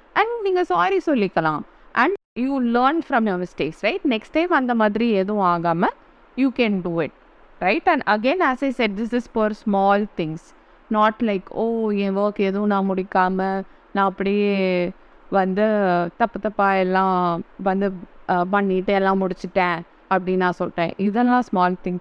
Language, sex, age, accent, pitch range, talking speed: Tamil, female, 20-39, native, 180-230 Hz, 145 wpm